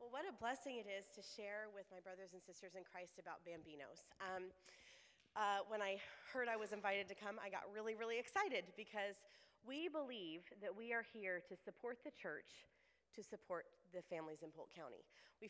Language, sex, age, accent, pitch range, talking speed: English, female, 30-49, American, 175-215 Hz, 200 wpm